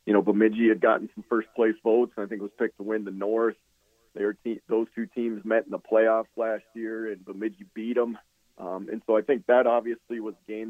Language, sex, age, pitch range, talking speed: English, male, 40-59, 100-115 Hz, 240 wpm